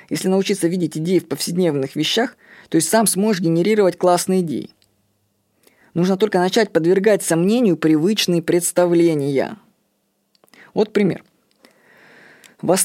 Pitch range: 165-220 Hz